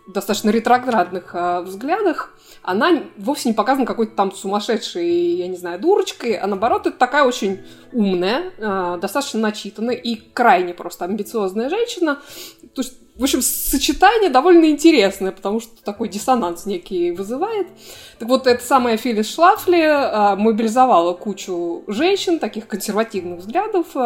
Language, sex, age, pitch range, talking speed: Russian, female, 20-39, 190-265 Hz, 135 wpm